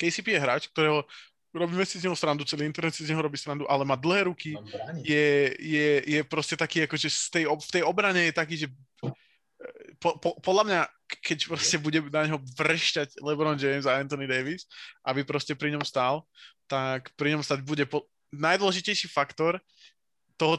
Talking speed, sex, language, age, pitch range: 180 wpm, male, Slovak, 20-39, 140-160 Hz